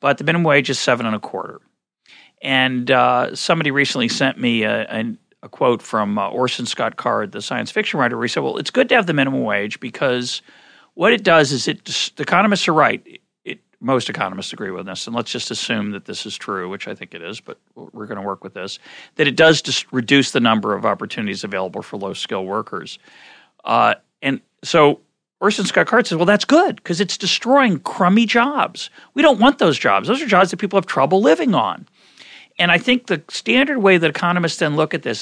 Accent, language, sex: American, English, male